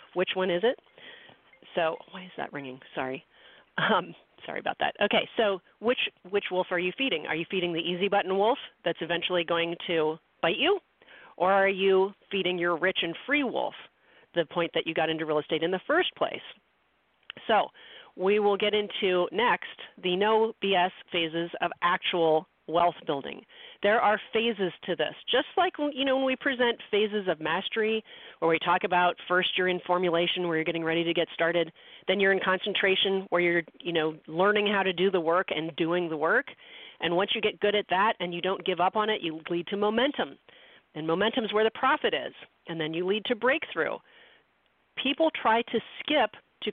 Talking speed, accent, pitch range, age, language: 195 wpm, American, 175-225 Hz, 40-59, English